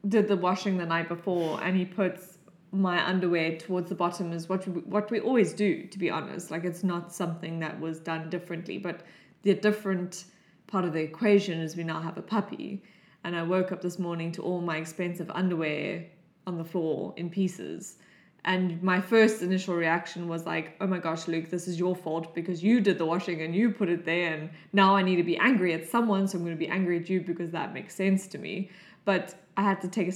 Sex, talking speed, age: female, 225 wpm, 20-39